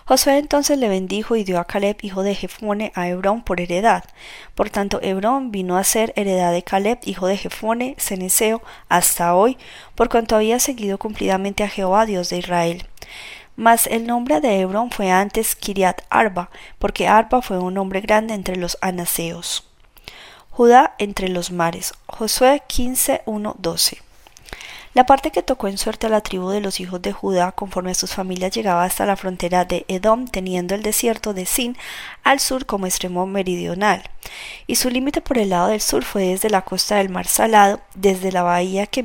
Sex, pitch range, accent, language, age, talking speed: female, 185-235 Hz, Colombian, Spanish, 20-39, 180 wpm